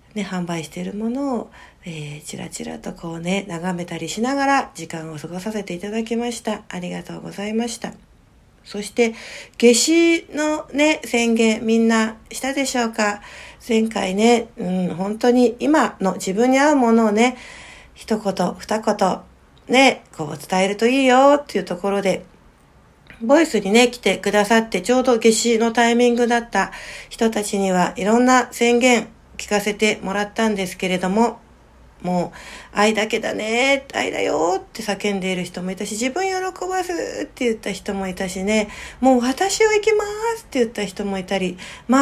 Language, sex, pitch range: Japanese, female, 195-255 Hz